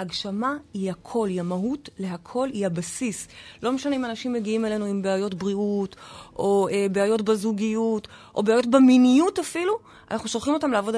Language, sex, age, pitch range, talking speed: Hebrew, female, 30-49, 190-260 Hz, 160 wpm